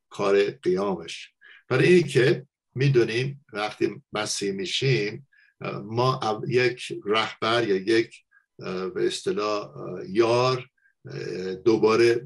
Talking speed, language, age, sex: 85 wpm, Persian, 50-69, male